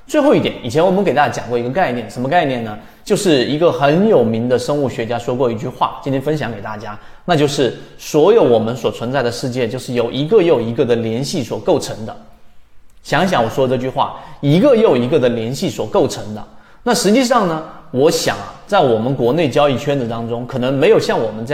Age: 20-39